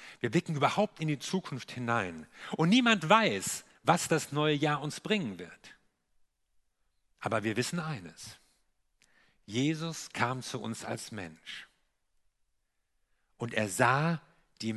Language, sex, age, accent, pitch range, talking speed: German, male, 50-69, German, 120-165 Hz, 125 wpm